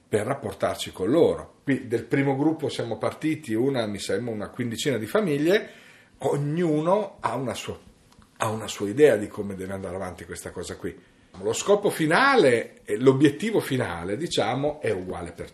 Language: Italian